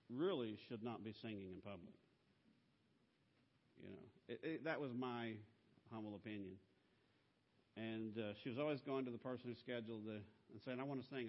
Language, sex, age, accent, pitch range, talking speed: English, male, 50-69, American, 105-125 Hz, 180 wpm